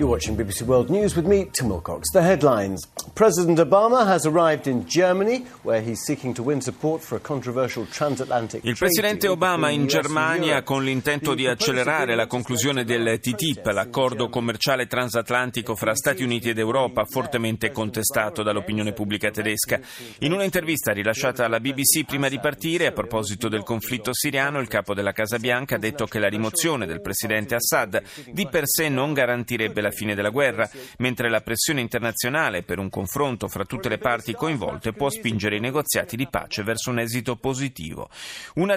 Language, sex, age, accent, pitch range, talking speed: Italian, male, 40-59, native, 110-145 Hz, 130 wpm